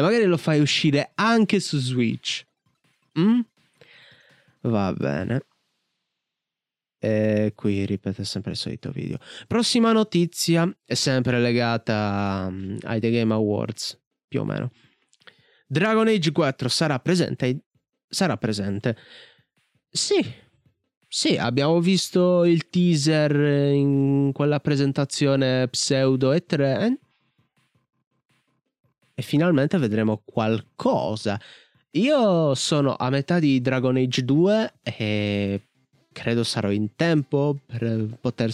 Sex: male